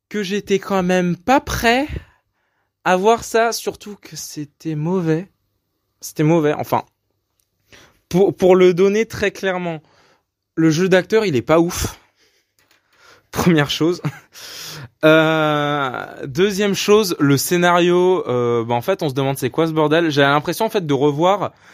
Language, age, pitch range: French, 20-39, 150-195 Hz